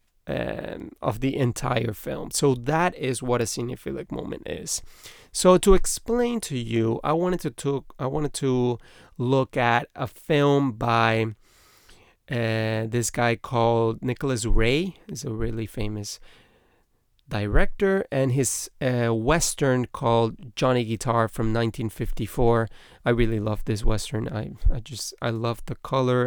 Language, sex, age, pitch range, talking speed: English, male, 30-49, 115-150 Hz, 140 wpm